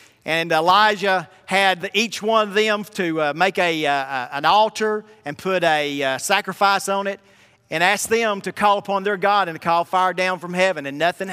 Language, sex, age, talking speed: English, male, 40-59, 200 wpm